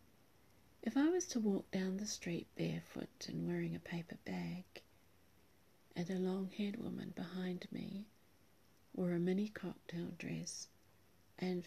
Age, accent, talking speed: 40-59, British, 135 wpm